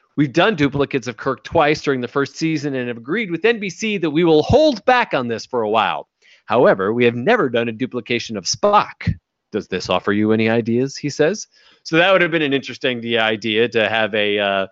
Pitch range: 115-155 Hz